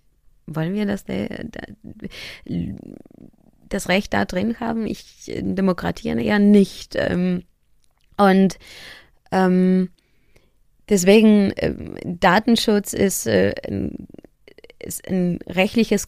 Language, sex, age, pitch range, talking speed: German, female, 20-39, 175-210 Hz, 65 wpm